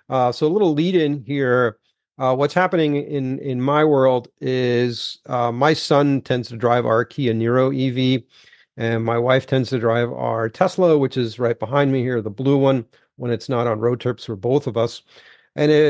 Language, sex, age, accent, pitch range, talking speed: English, male, 40-59, American, 120-150 Hz, 200 wpm